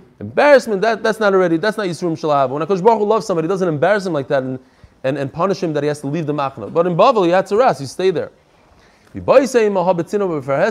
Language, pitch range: English, 165-215 Hz